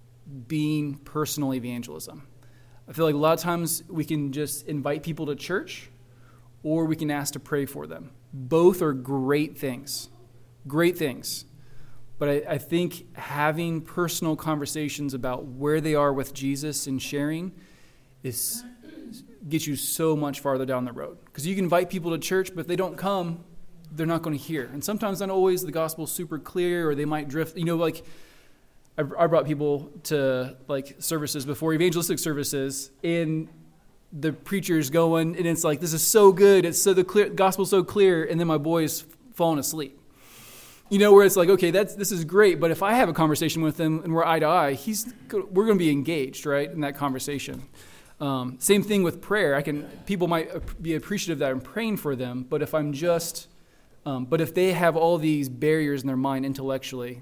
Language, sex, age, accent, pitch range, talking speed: English, male, 20-39, American, 140-170 Hz, 195 wpm